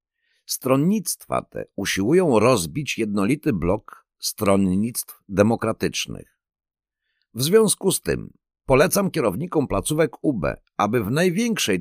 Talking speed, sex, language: 95 wpm, male, Polish